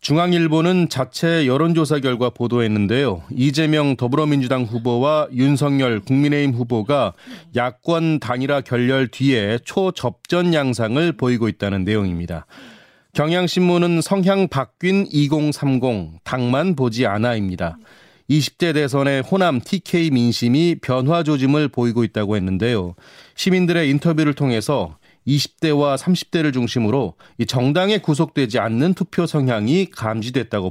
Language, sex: Korean, male